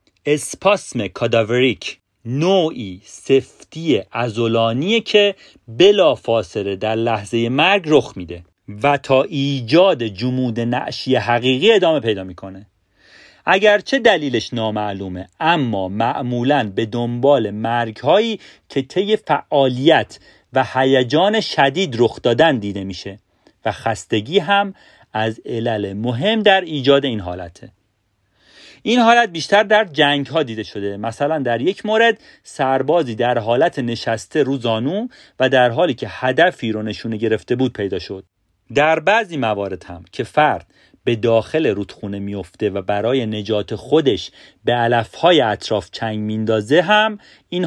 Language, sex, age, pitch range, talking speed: Persian, male, 40-59, 110-160 Hz, 125 wpm